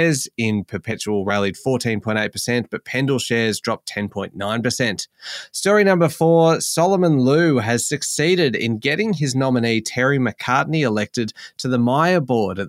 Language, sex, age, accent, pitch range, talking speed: English, male, 20-39, Australian, 110-140 Hz, 130 wpm